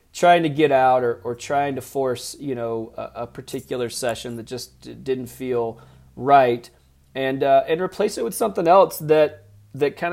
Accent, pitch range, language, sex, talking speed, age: American, 115-145 Hz, English, male, 190 wpm, 30-49